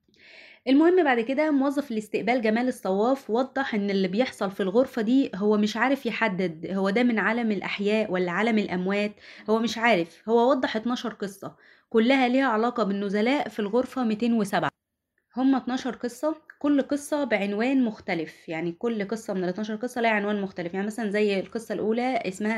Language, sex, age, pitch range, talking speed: Arabic, female, 20-39, 195-250 Hz, 160 wpm